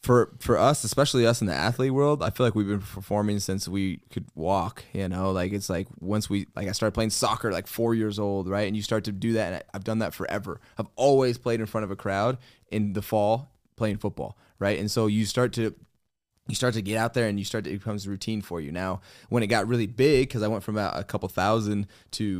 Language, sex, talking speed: English, male, 260 wpm